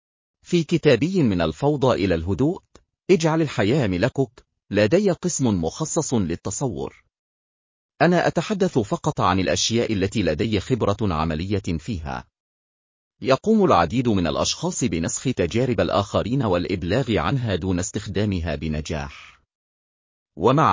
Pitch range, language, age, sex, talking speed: 95-145 Hz, Arabic, 40-59, male, 105 wpm